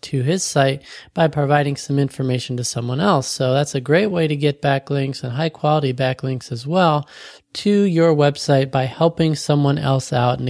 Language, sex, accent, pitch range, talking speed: English, male, American, 130-160 Hz, 190 wpm